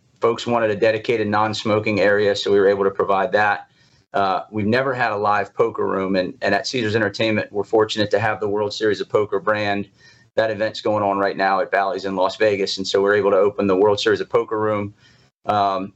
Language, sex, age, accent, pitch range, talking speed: English, male, 30-49, American, 100-120 Hz, 225 wpm